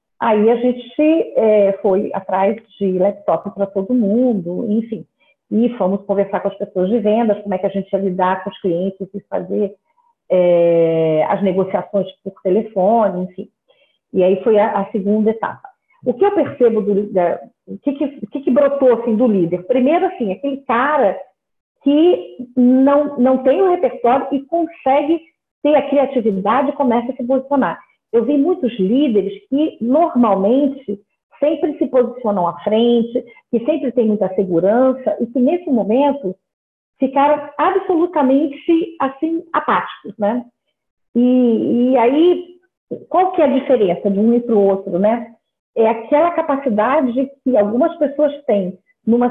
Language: Portuguese